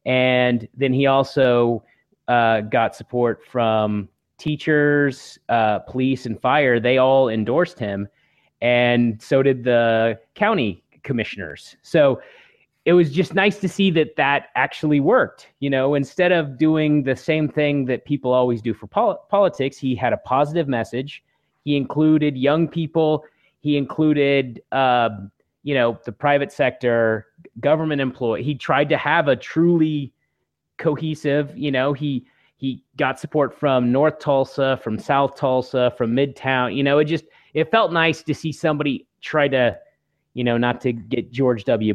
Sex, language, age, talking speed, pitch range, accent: male, English, 30-49, 155 wpm, 120-155 Hz, American